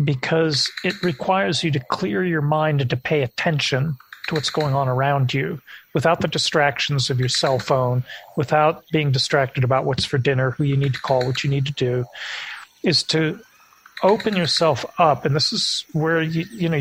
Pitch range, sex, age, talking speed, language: 135-165 Hz, male, 40-59, 195 wpm, English